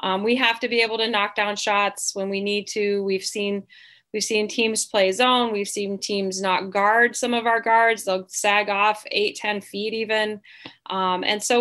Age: 20-39